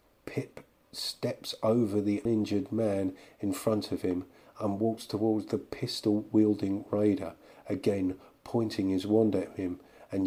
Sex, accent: male, British